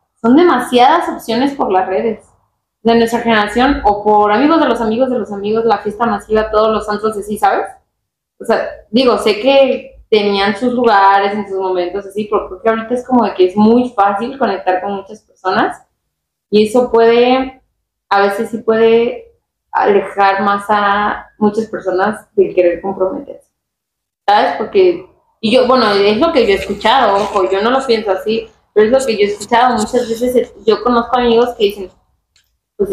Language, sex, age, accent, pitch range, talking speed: Spanish, female, 20-39, Mexican, 200-245 Hz, 180 wpm